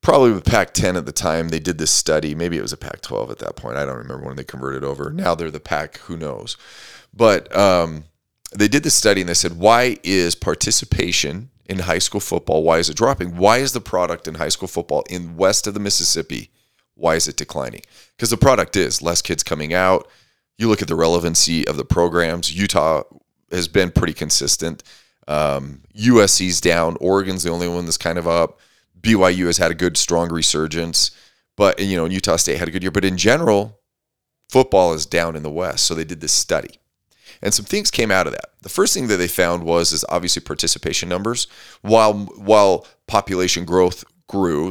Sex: male